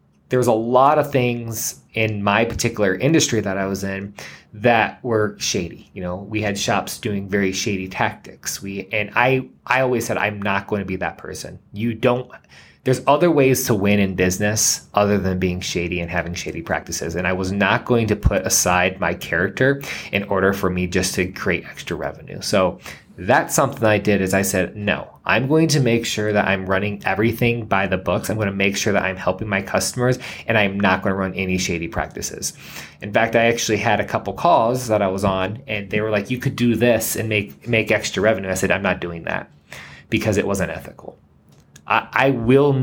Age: 20-39